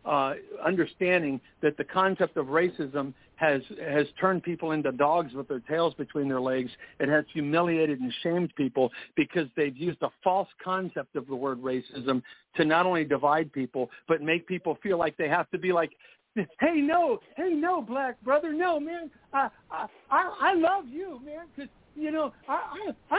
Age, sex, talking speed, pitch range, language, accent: 60-79, male, 180 wpm, 155-255 Hz, English, American